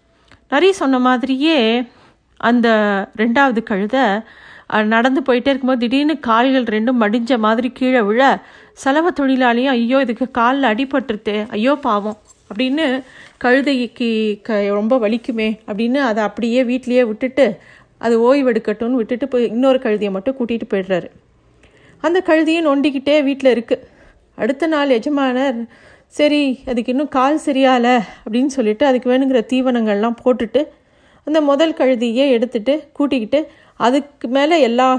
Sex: female